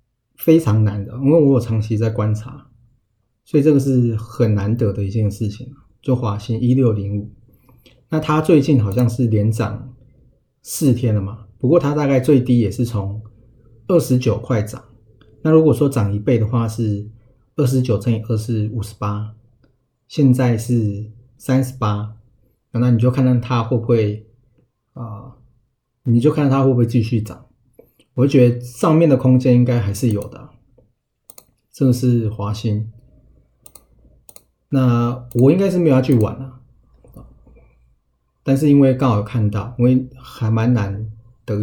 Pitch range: 110-130 Hz